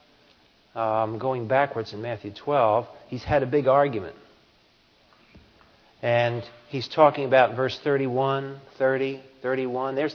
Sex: male